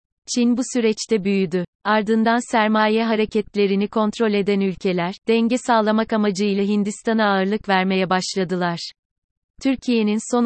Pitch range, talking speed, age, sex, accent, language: 190-215 Hz, 110 wpm, 30-49, female, native, Turkish